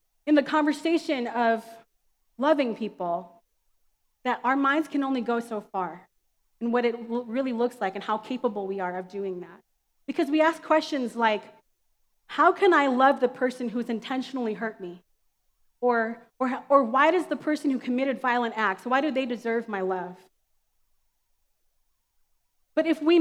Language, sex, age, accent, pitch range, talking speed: English, female, 30-49, American, 230-300 Hz, 165 wpm